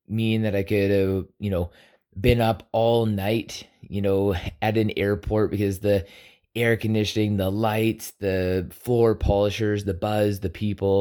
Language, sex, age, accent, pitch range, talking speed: English, male, 20-39, American, 100-120 Hz, 160 wpm